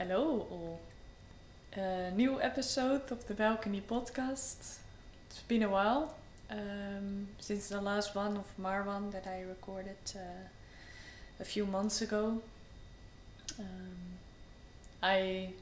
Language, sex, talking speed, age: Dutch, female, 110 wpm, 10-29